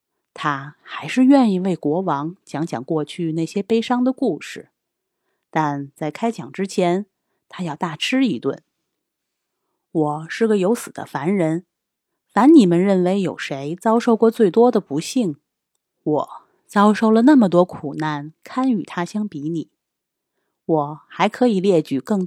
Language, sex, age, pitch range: Chinese, female, 30-49, 160-225 Hz